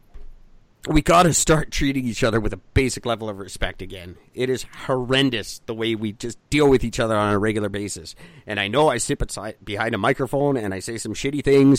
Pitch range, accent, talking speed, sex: 110-140 Hz, American, 220 wpm, male